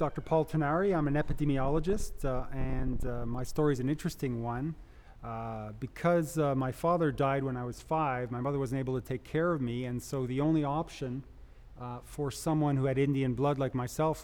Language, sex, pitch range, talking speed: English, male, 125-155 Hz, 200 wpm